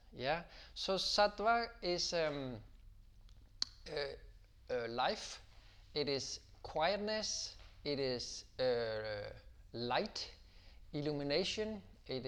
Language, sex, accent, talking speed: English, male, Danish, 90 wpm